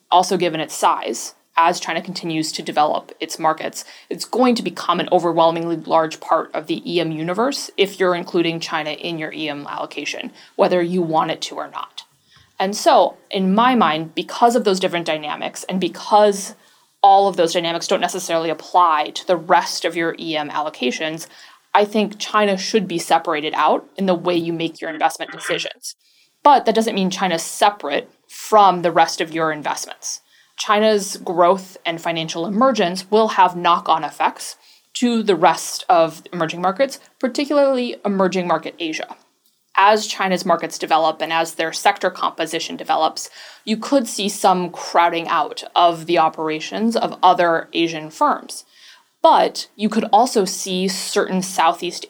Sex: female